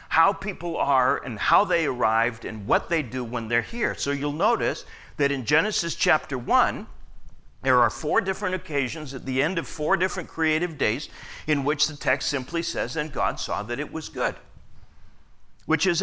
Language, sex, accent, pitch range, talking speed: English, male, American, 125-180 Hz, 185 wpm